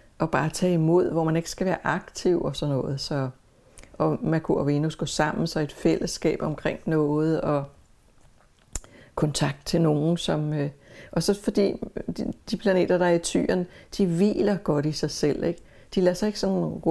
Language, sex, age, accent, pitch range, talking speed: English, female, 60-79, Danish, 145-175 Hz, 185 wpm